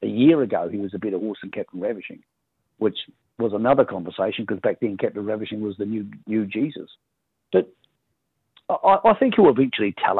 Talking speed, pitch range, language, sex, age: 190 wpm, 100-125 Hz, English, male, 50-69